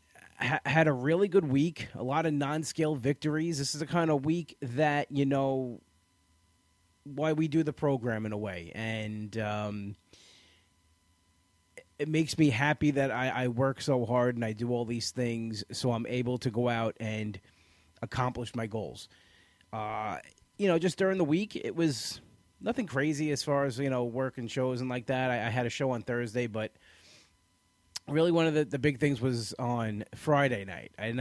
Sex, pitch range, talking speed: male, 110-145 Hz, 190 wpm